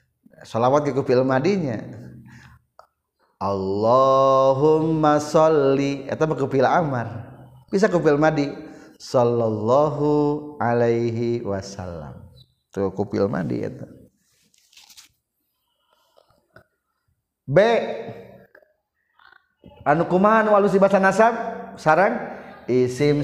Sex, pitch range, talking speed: male, 130-185 Hz, 70 wpm